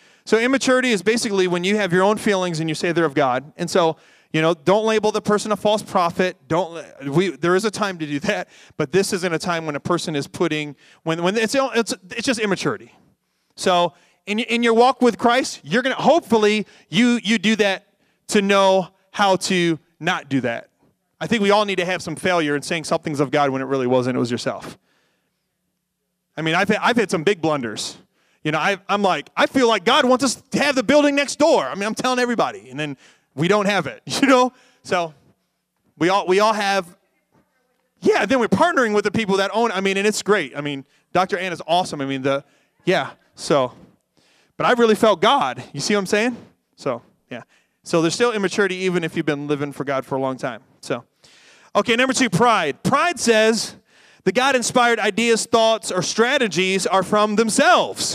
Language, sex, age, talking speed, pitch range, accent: English, male, 30-49, 215 wpm, 165-225 Hz, American